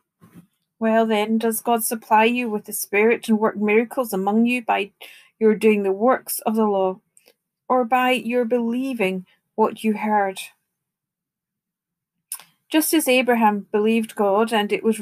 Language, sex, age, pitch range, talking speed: English, female, 40-59, 190-235 Hz, 150 wpm